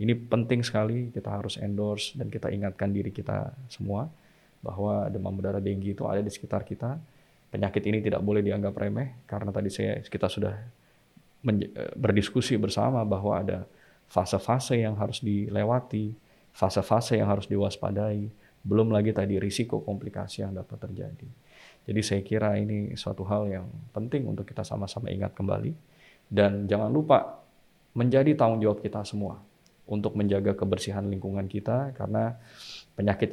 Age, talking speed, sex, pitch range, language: 20-39, 145 wpm, male, 100-125 Hz, Indonesian